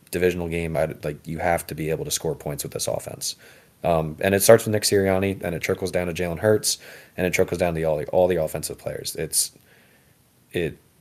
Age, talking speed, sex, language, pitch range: 30-49, 230 wpm, male, English, 85-100 Hz